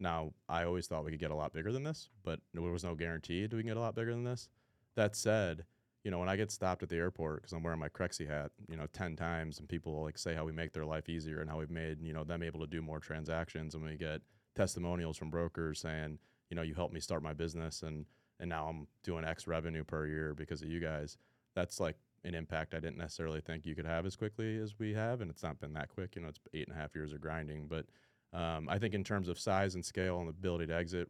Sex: male